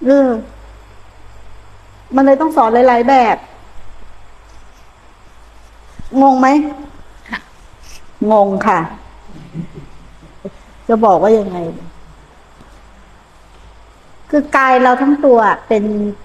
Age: 60-79